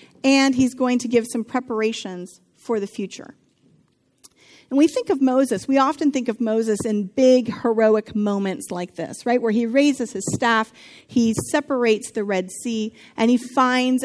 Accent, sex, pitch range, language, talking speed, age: American, female, 220-270 Hz, English, 170 wpm, 40-59